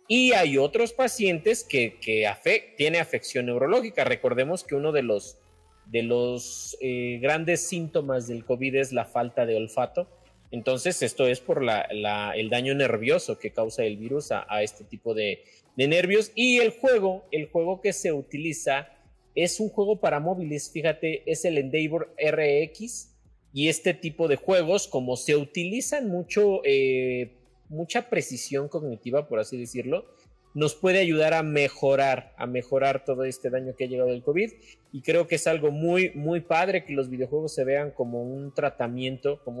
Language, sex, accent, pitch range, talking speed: Spanish, male, Mexican, 130-185 Hz, 170 wpm